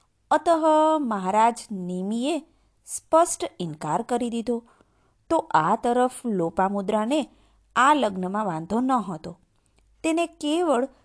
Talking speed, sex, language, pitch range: 105 wpm, female, Gujarati, 200-280 Hz